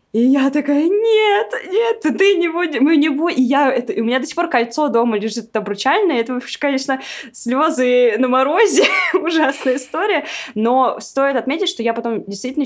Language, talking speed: Russian, 170 wpm